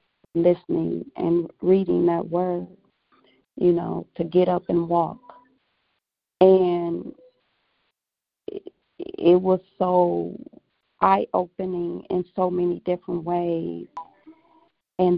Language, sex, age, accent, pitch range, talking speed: English, female, 40-59, American, 175-195 Hz, 95 wpm